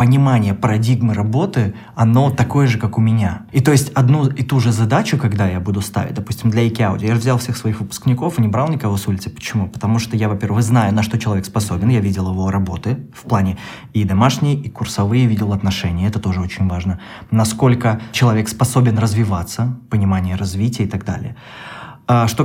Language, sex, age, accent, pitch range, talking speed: Russian, male, 20-39, native, 105-125 Hz, 190 wpm